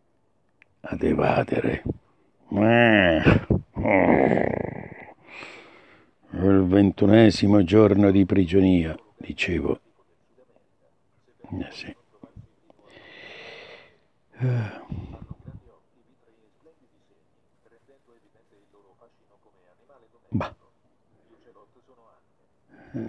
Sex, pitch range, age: male, 100-135 Hz, 60-79